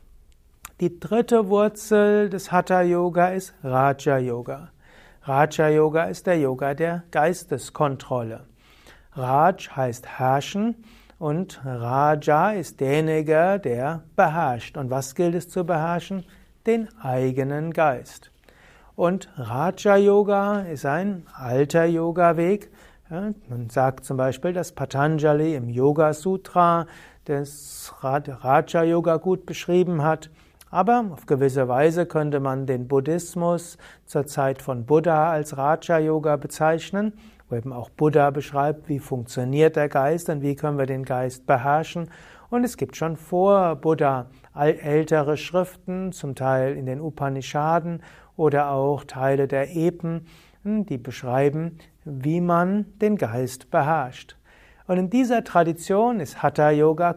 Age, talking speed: 60-79, 120 wpm